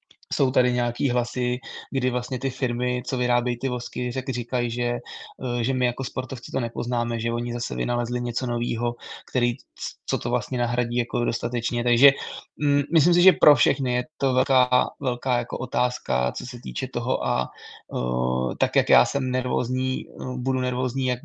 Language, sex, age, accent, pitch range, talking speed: Czech, male, 20-39, native, 125-135 Hz, 170 wpm